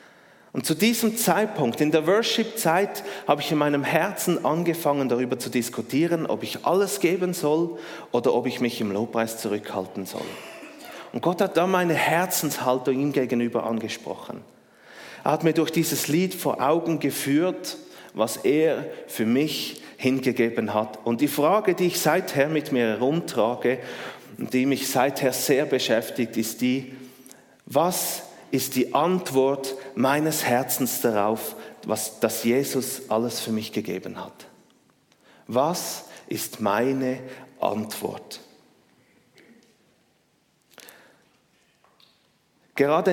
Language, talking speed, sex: German, 125 wpm, male